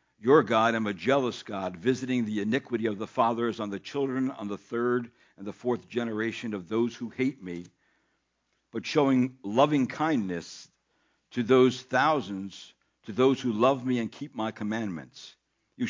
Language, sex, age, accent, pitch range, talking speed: English, male, 60-79, American, 105-130 Hz, 165 wpm